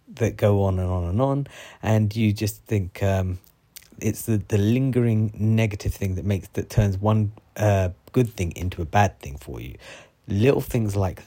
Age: 30-49